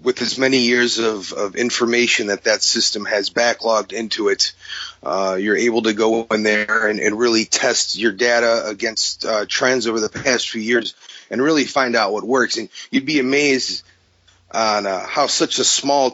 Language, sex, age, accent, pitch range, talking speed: English, male, 30-49, American, 105-140 Hz, 190 wpm